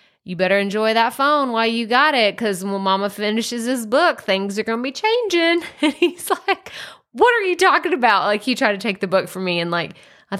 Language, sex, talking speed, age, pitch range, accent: English, female, 235 wpm, 20-39, 180-230 Hz, American